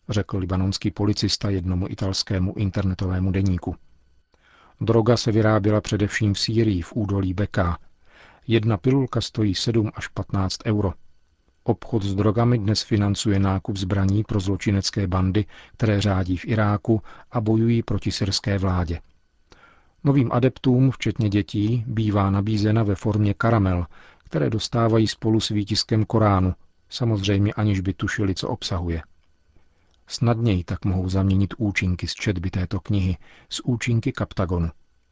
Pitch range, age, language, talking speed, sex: 95-110 Hz, 40-59, Czech, 130 wpm, male